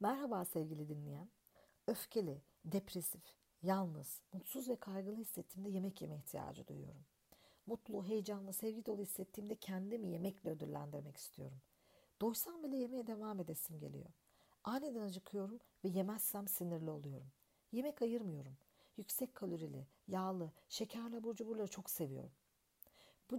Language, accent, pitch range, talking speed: Turkish, native, 170-220 Hz, 120 wpm